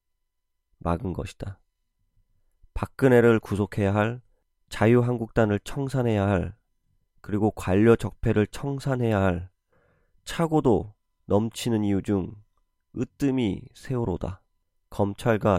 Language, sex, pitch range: Korean, male, 90-110 Hz